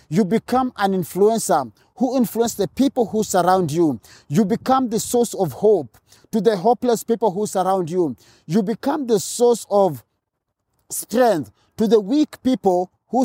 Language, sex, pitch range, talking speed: English, male, 135-210 Hz, 160 wpm